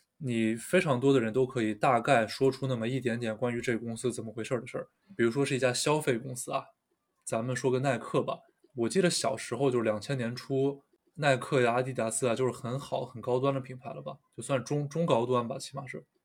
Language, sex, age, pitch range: Chinese, male, 20-39, 115-135 Hz